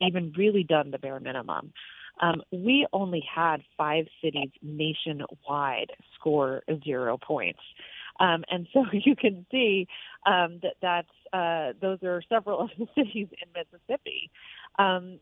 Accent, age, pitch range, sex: American, 30-49, 155-195 Hz, female